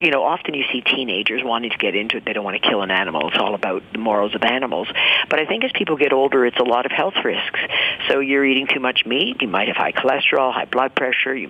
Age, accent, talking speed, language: 50-69, American, 275 wpm, English